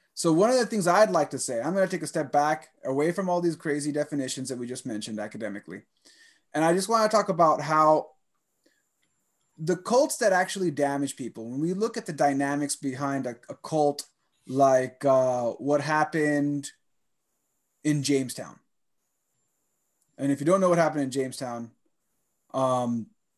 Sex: male